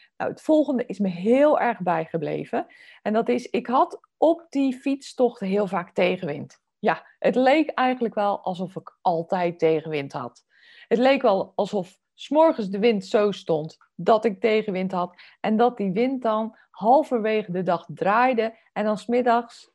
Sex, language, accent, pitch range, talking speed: female, Dutch, Dutch, 180-240 Hz, 160 wpm